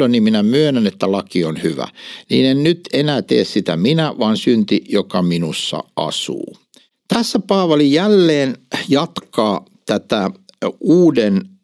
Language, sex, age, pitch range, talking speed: Finnish, male, 60-79, 105-170 Hz, 130 wpm